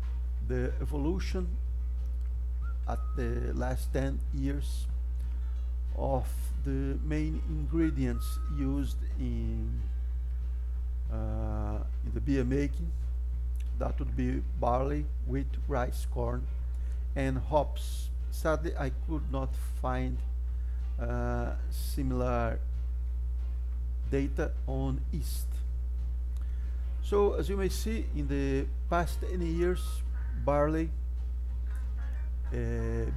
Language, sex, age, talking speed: Portuguese, male, 50-69, 90 wpm